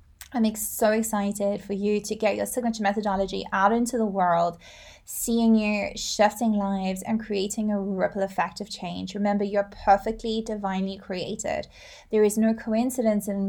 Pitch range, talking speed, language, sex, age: 195-220 Hz, 155 wpm, English, female, 20-39